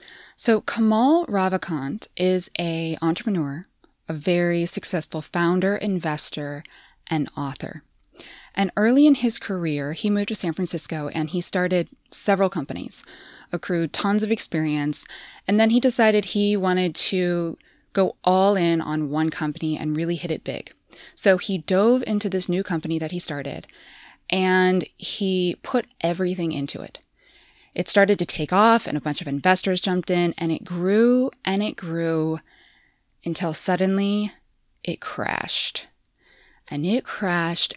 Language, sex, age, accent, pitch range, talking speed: English, female, 20-39, American, 160-200 Hz, 145 wpm